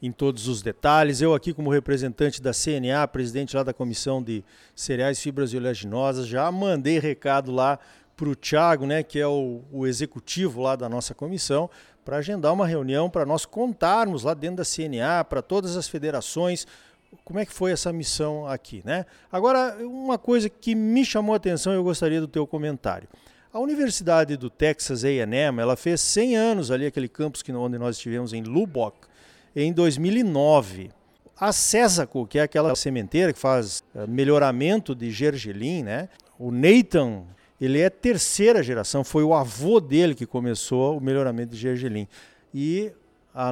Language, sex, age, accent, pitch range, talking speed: Portuguese, male, 50-69, Brazilian, 130-190 Hz, 170 wpm